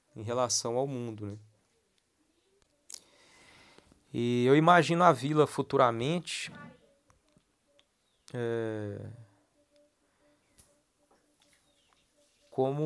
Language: Portuguese